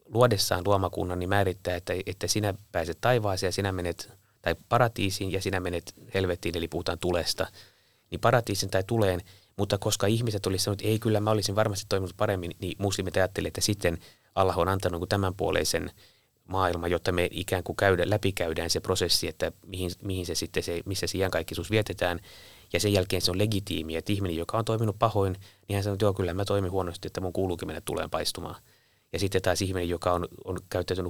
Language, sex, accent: Finnish, male, native